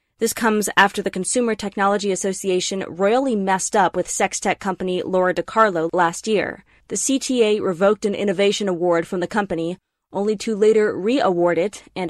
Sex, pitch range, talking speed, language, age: female, 190-235 Hz, 165 wpm, English, 20-39